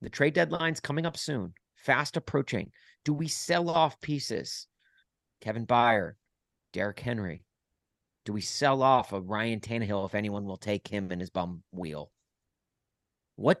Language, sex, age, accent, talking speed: English, male, 40-59, American, 150 wpm